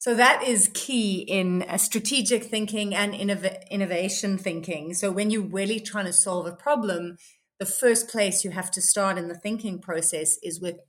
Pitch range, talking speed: 185-230 Hz, 175 wpm